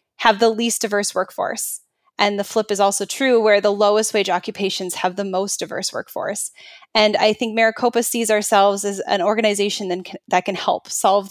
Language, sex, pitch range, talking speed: English, female, 195-230 Hz, 180 wpm